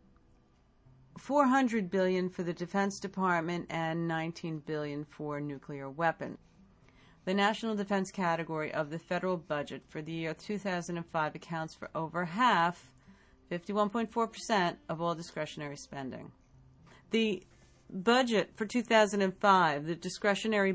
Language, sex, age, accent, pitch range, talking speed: English, female, 50-69, American, 160-205 Hz, 115 wpm